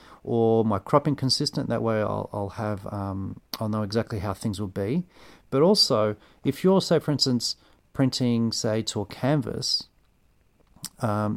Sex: male